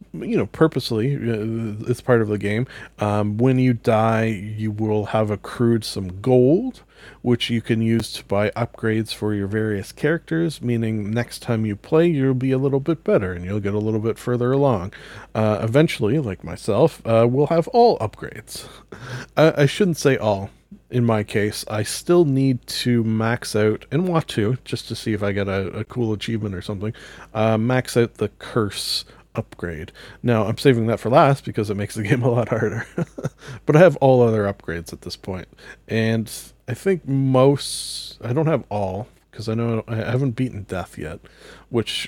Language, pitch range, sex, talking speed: English, 110-135 Hz, male, 190 wpm